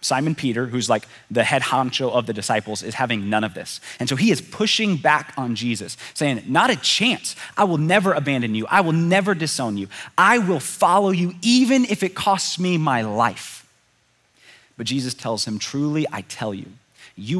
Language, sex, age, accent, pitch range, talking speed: English, male, 30-49, American, 105-135 Hz, 195 wpm